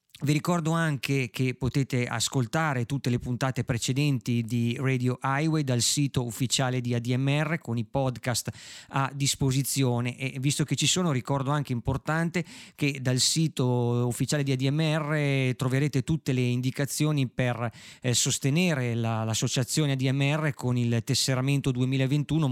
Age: 30-49